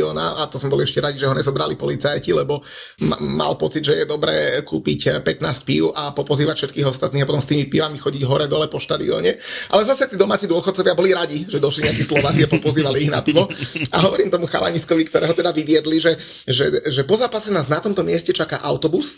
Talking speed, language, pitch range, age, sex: 210 wpm, Slovak, 145-175 Hz, 30-49, male